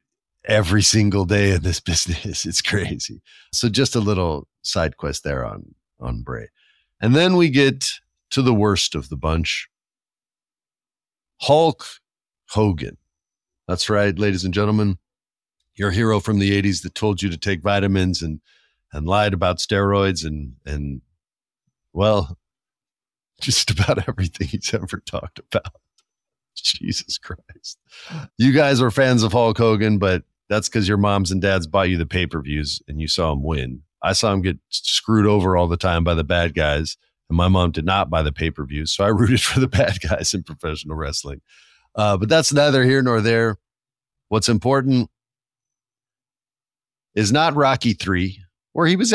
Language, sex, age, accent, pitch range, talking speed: English, male, 50-69, American, 85-120 Hz, 160 wpm